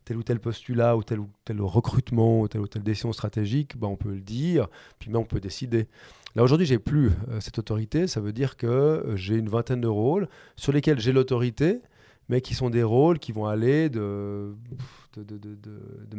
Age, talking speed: 30-49, 220 wpm